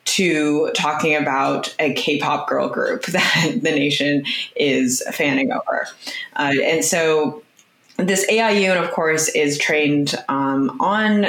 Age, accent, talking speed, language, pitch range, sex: 20-39, American, 135 wpm, English, 145-185 Hz, female